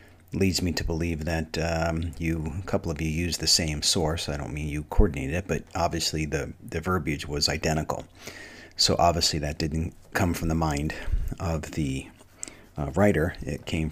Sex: male